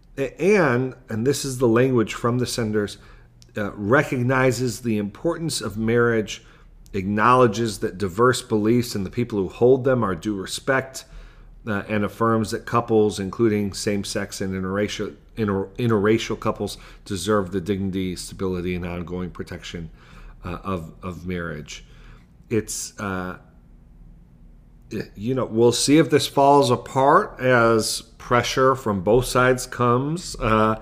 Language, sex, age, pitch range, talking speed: English, male, 40-59, 95-115 Hz, 130 wpm